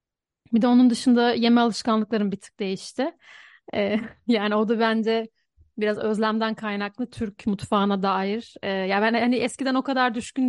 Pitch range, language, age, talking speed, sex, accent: 200-240 Hz, Turkish, 30-49, 150 wpm, female, native